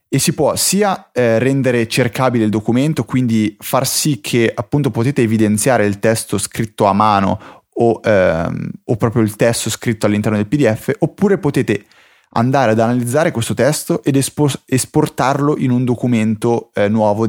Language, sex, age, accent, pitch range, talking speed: Italian, male, 30-49, native, 105-130 Hz, 160 wpm